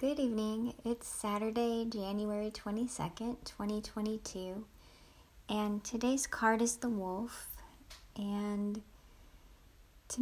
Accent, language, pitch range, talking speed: American, English, 185-215 Hz, 90 wpm